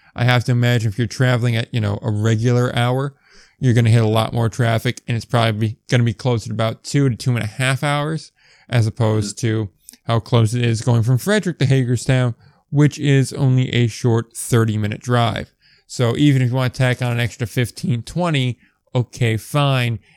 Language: English